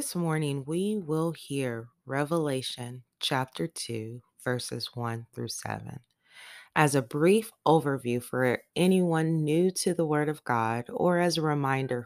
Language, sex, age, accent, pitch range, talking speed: English, female, 20-39, American, 125-160 Hz, 140 wpm